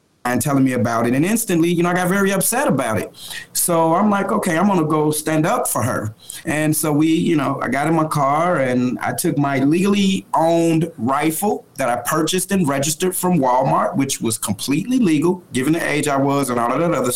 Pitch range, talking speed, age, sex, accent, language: 140-165 Hz, 225 wpm, 30-49, male, American, English